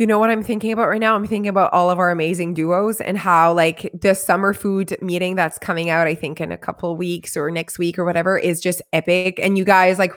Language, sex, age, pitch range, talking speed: English, female, 20-39, 190-240 Hz, 260 wpm